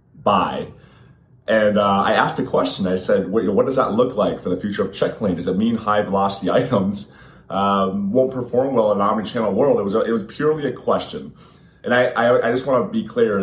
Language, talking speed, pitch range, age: English, 220 wpm, 95-125 Hz, 30-49